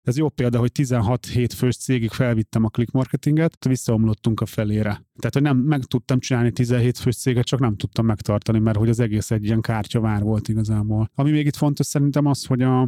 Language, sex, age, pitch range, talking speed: Hungarian, male, 30-49, 115-125 Hz, 195 wpm